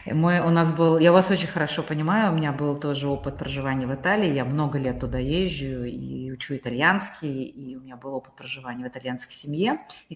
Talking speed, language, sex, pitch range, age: 185 wpm, Russian, female, 140-195 Hz, 30-49